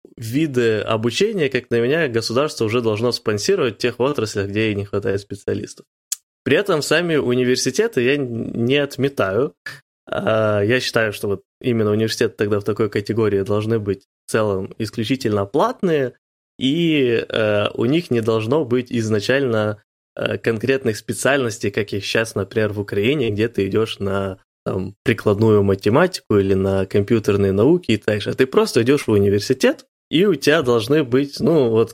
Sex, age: male, 20-39